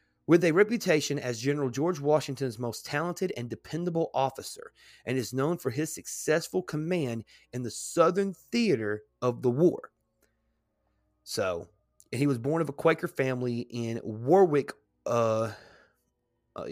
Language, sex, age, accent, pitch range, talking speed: English, male, 30-49, American, 115-150 Hz, 140 wpm